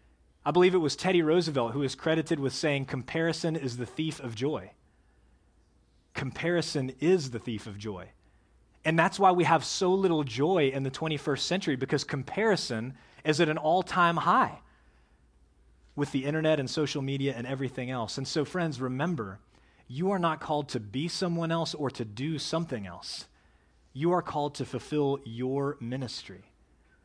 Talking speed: 165 wpm